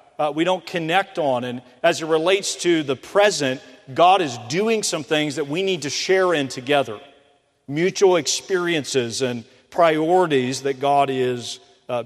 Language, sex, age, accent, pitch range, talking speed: English, male, 40-59, American, 130-160 Hz, 165 wpm